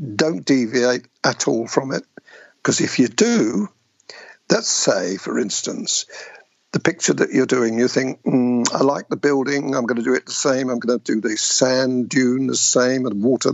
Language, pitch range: English, 125-150 Hz